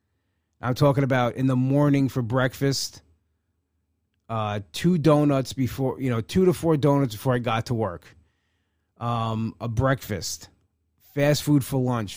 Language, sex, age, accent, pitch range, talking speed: English, male, 30-49, American, 100-135 Hz, 150 wpm